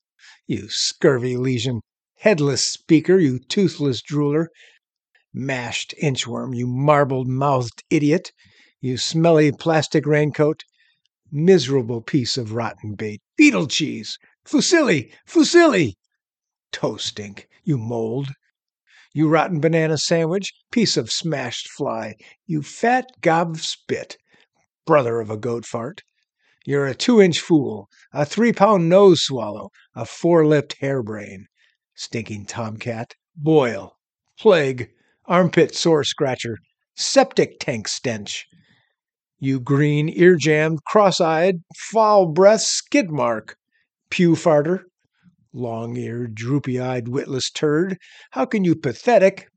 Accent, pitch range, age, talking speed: American, 125-175 Hz, 60-79, 100 wpm